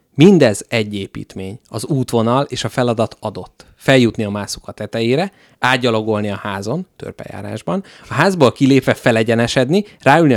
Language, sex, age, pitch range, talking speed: Hungarian, male, 30-49, 115-185 Hz, 125 wpm